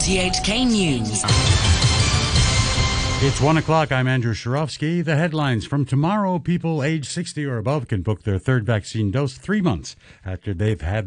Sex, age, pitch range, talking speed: male, 60-79, 105-145 Hz, 150 wpm